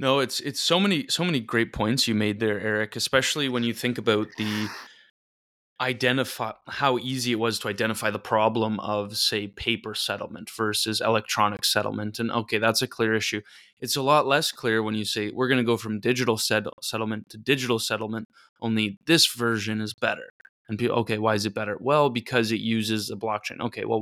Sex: male